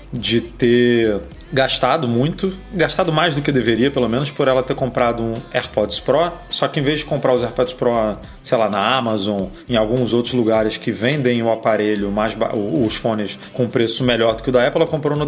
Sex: male